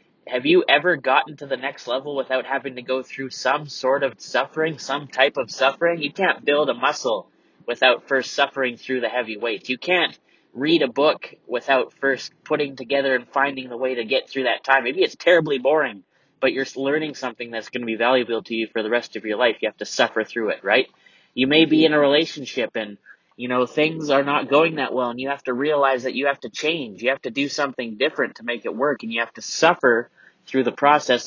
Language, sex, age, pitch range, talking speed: English, male, 20-39, 125-150 Hz, 235 wpm